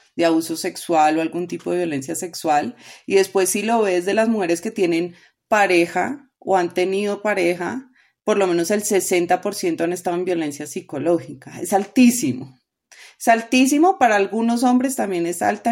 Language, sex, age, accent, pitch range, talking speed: Spanish, female, 30-49, Colombian, 175-220 Hz, 170 wpm